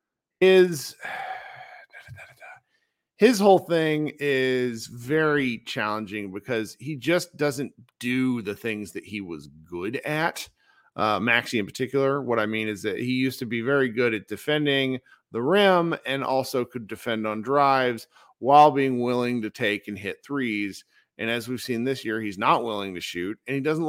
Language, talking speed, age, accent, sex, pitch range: English, 165 wpm, 40-59, American, male, 110-150 Hz